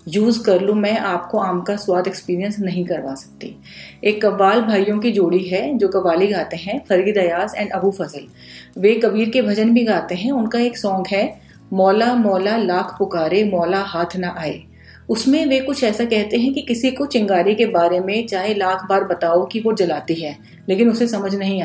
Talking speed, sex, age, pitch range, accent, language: 195 wpm, female, 30-49, 180-225 Hz, native, Hindi